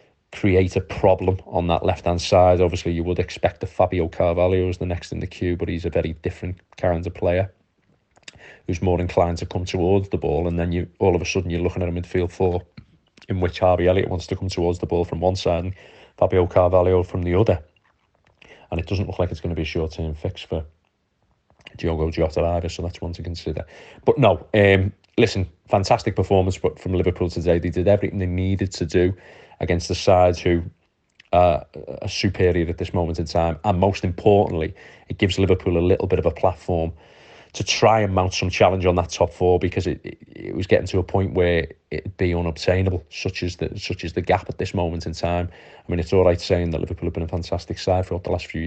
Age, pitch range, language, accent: 30-49, 85-95 Hz, English, British